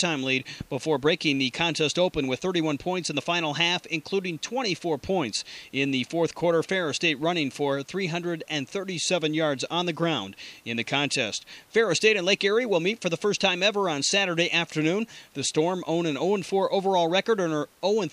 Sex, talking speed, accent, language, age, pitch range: male, 185 wpm, American, English, 30-49, 145-180 Hz